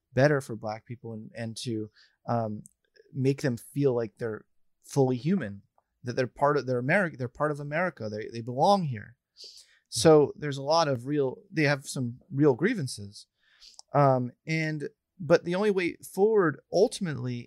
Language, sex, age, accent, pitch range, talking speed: English, male, 30-49, American, 125-165 Hz, 160 wpm